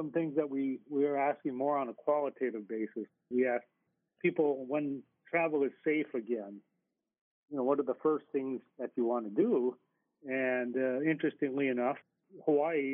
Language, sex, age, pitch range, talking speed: English, male, 40-59, 120-150 Hz, 170 wpm